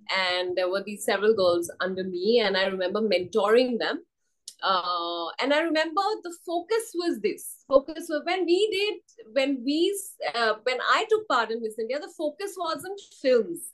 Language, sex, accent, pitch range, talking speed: English, female, Indian, 225-345 Hz, 175 wpm